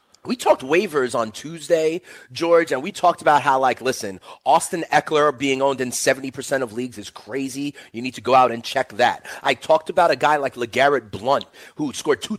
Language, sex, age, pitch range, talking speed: English, male, 30-49, 130-185 Hz, 205 wpm